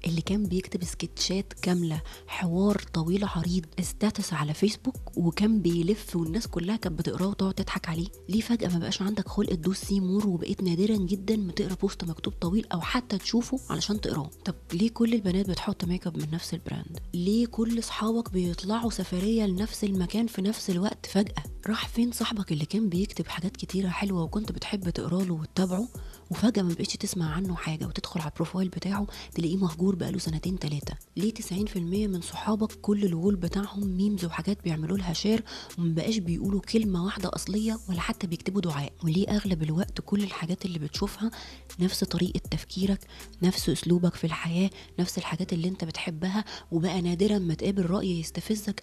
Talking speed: 165 wpm